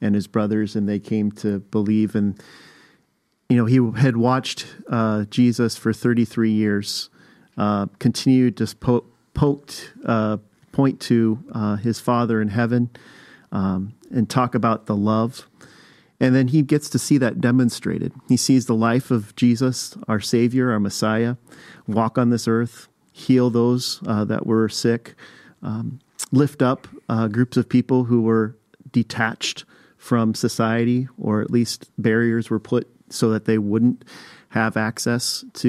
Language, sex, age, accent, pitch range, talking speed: English, male, 40-59, American, 110-125 Hz, 155 wpm